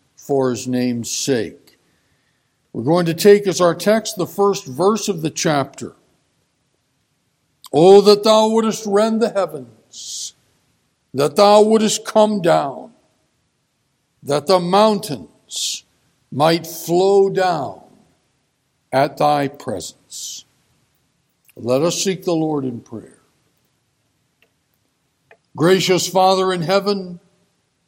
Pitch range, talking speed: 140-185 Hz, 105 wpm